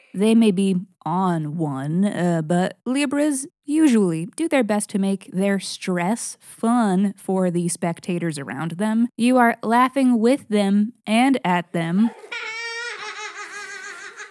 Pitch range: 175-235 Hz